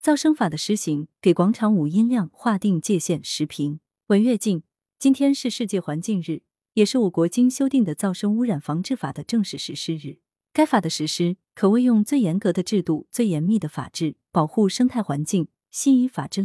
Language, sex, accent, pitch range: Chinese, female, native, 160-230 Hz